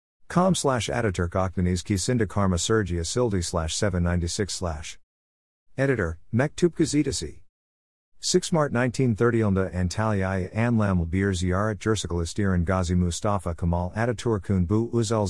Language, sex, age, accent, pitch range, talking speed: Turkish, male, 50-69, American, 85-110 Hz, 100 wpm